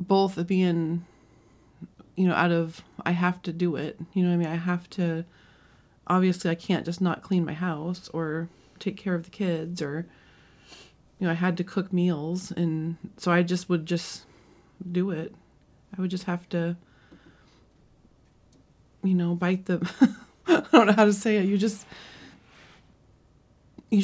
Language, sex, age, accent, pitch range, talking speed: English, female, 30-49, American, 170-190 Hz, 170 wpm